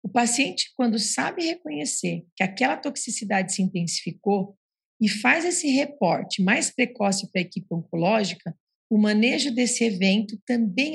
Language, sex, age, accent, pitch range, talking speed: English, female, 40-59, Brazilian, 195-250 Hz, 135 wpm